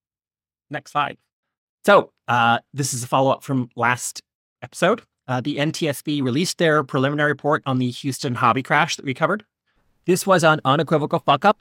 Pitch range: 120-145 Hz